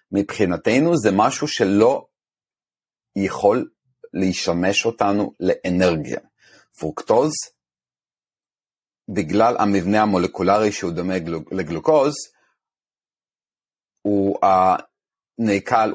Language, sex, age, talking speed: Hebrew, male, 40-59, 65 wpm